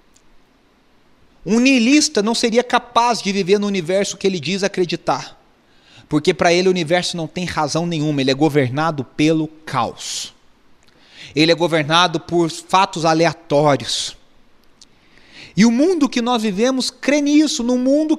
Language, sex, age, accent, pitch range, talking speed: Portuguese, male, 40-59, Brazilian, 180-260 Hz, 140 wpm